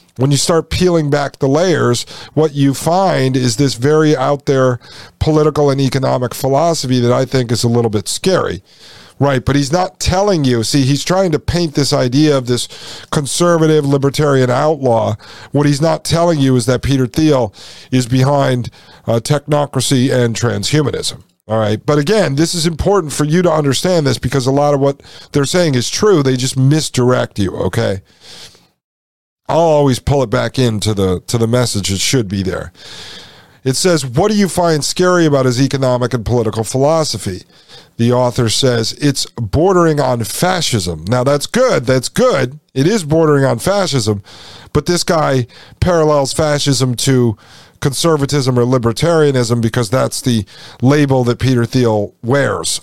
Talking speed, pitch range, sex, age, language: 165 wpm, 120-155 Hz, male, 50-69, English